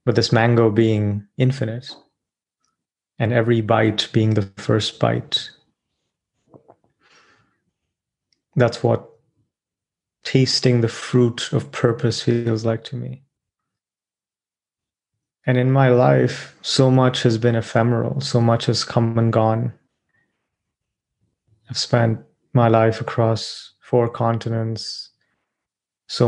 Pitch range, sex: 110-120 Hz, male